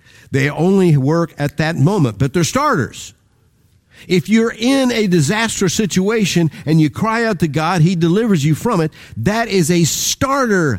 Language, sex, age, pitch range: English, male, 50-69, 135-210 Hz